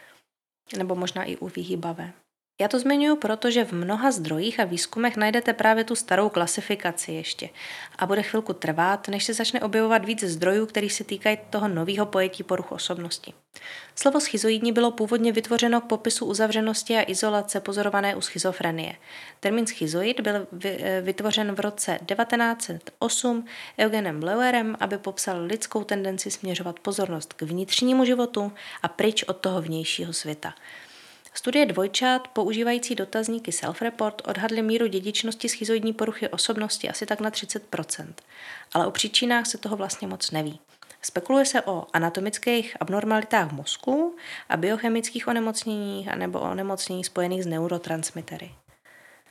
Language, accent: Czech, native